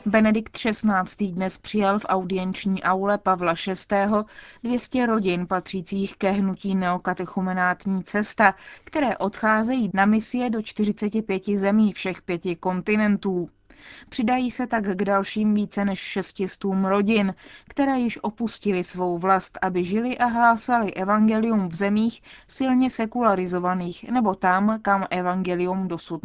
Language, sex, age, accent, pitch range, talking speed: Czech, female, 20-39, native, 185-225 Hz, 125 wpm